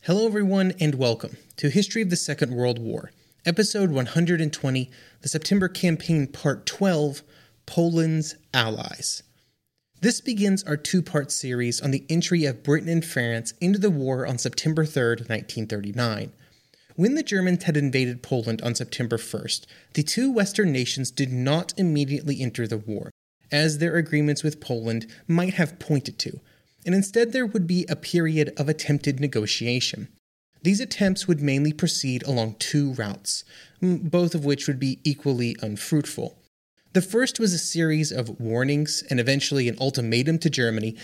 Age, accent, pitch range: 30-49, American, 125-170 Hz